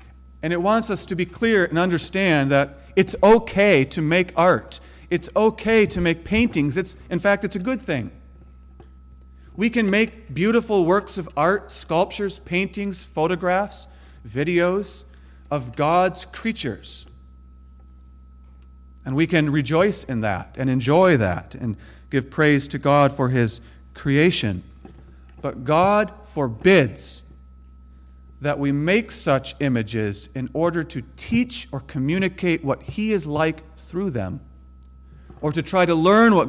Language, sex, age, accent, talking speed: English, male, 40-59, American, 140 wpm